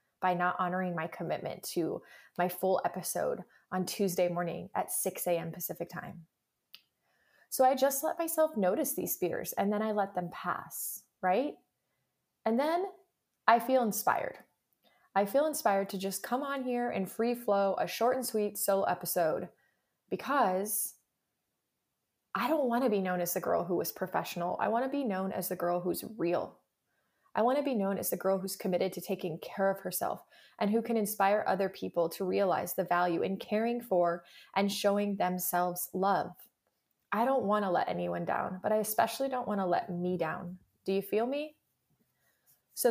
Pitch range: 180-230 Hz